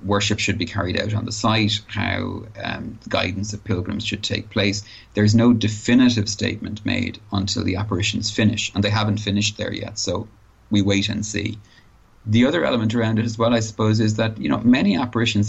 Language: English